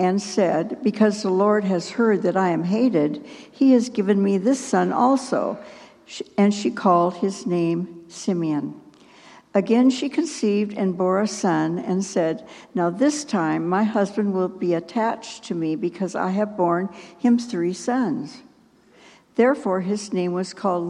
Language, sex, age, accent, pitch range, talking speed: English, female, 60-79, American, 185-230 Hz, 160 wpm